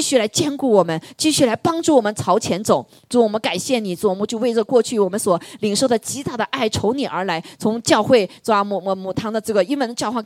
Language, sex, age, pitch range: Chinese, female, 20-39, 220-295 Hz